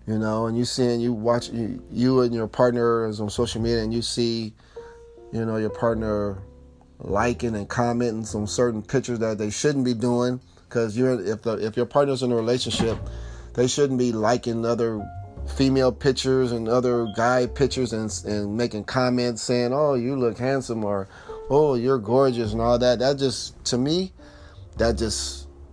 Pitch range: 100-125 Hz